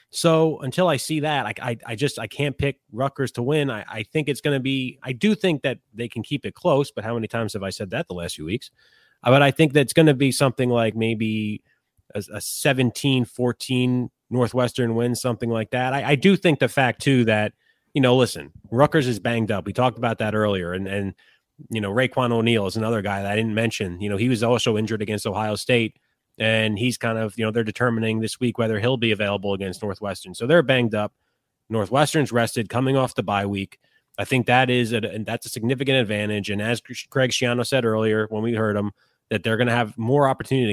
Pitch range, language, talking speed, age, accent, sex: 110-130 Hz, English, 225 wpm, 30-49, American, male